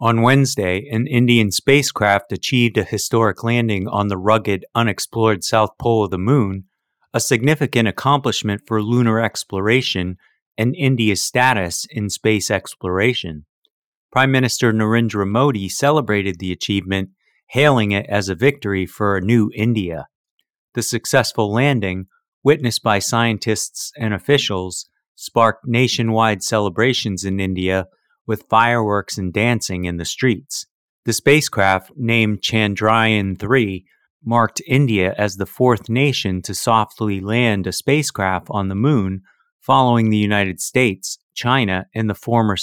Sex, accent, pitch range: male, American, 100-120 Hz